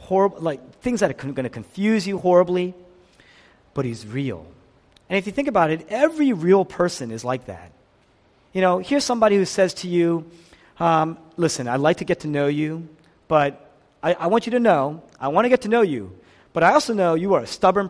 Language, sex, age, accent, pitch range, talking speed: English, male, 40-59, American, 120-190 Hz, 210 wpm